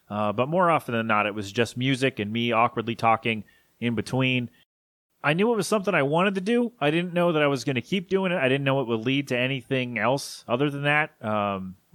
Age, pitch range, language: 30-49, 115-145 Hz, English